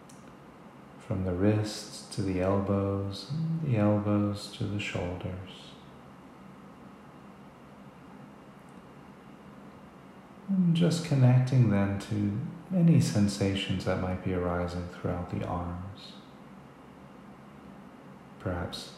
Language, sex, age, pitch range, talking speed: English, male, 40-59, 95-125 Hz, 80 wpm